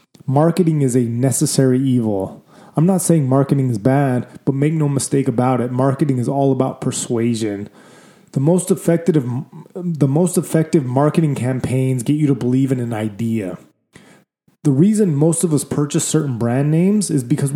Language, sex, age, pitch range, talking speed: English, male, 20-39, 130-155 Hz, 155 wpm